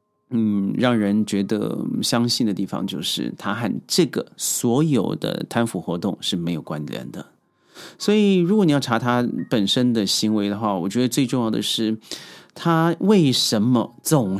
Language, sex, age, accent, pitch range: Chinese, male, 30-49, native, 105-140 Hz